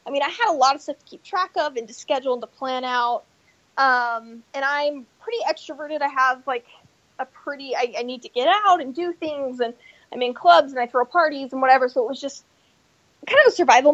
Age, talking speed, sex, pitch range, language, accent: 20-39, 240 wpm, female, 250-310 Hz, English, American